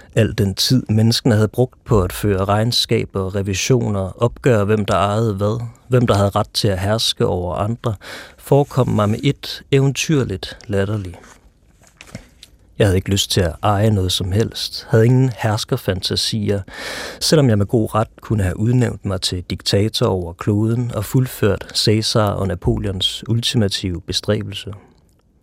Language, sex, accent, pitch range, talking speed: Danish, male, native, 95-115 Hz, 150 wpm